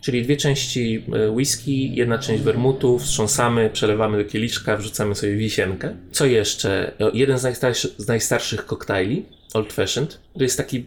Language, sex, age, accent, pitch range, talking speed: Polish, male, 30-49, native, 110-145 Hz, 140 wpm